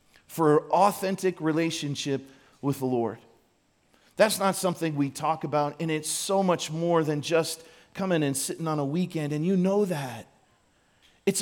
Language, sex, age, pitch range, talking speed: English, male, 40-59, 145-185 Hz, 160 wpm